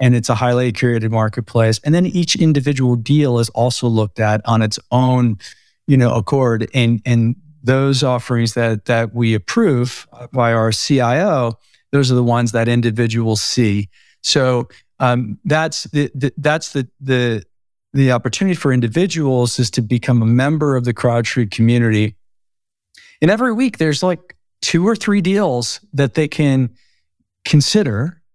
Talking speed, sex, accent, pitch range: 155 wpm, male, American, 115-135 Hz